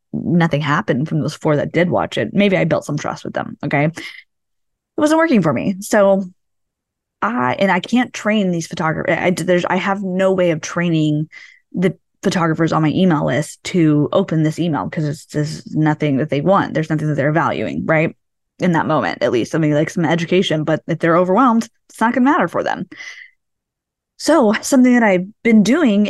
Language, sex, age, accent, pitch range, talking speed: English, female, 20-39, American, 165-215 Hz, 200 wpm